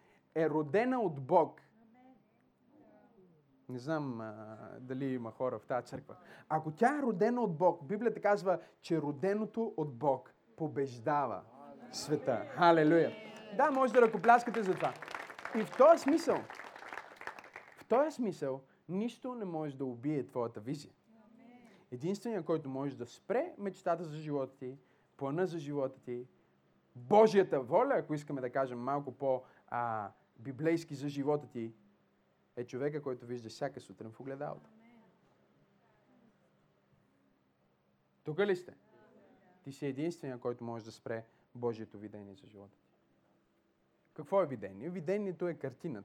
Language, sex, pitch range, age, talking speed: Bulgarian, male, 110-185 Hz, 30-49, 130 wpm